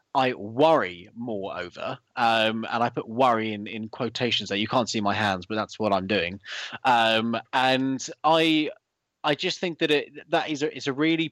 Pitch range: 115-150 Hz